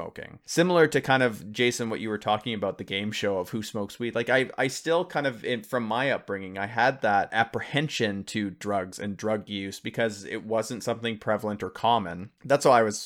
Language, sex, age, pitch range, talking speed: English, male, 30-49, 100-120 Hz, 210 wpm